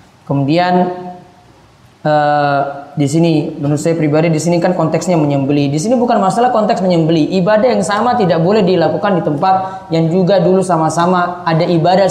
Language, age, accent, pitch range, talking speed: Indonesian, 20-39, native, 160-205 Hz, 165 wpm